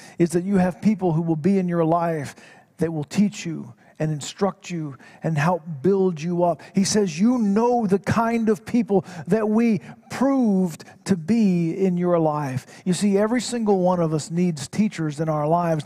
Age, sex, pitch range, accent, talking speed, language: 50-69, male, 170-210 Hz, American, 195 wpm, English